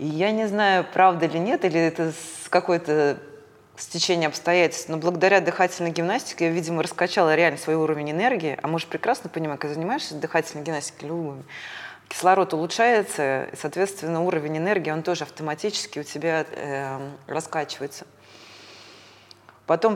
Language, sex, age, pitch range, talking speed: Russian, female, 20-39, 150-180 Hz, 140 wpm